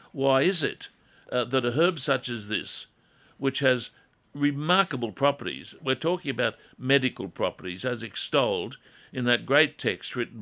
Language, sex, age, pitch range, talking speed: English, male, 60-79, 110-135 Hz, 150 wpm